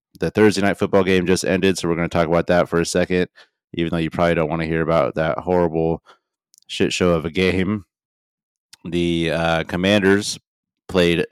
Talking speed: 195 wpm